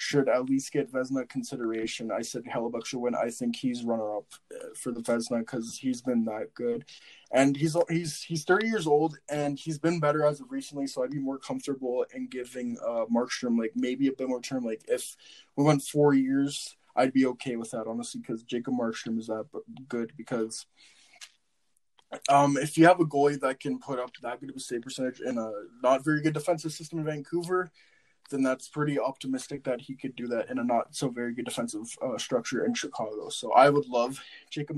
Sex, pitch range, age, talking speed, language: male, 125-150 Hz, 20-39, 210 wpm, English